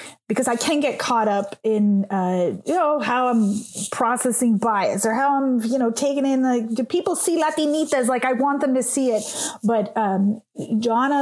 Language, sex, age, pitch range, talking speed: English, female, 30-49, 225-280 Hz, 195 wpm